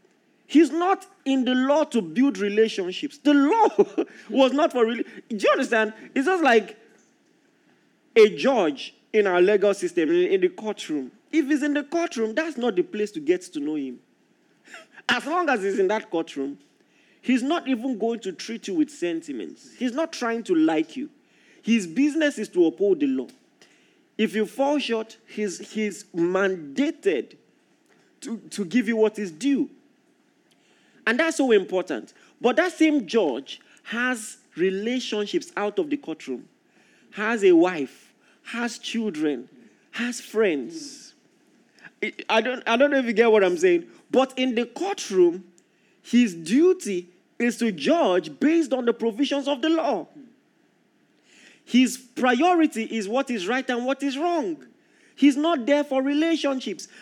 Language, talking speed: English, 160 wpm